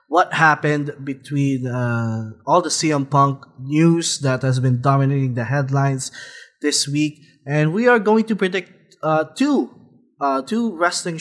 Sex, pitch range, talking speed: male, 135-165 Hz, 150 wpm